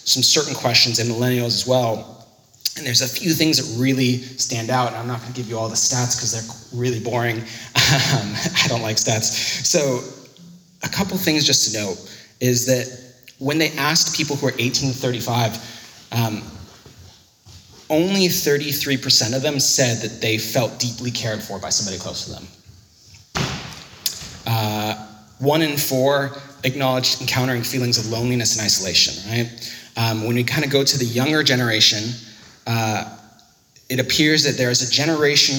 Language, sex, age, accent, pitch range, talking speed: English, male, 30-49, American, 115-135 Hz, 165 wpm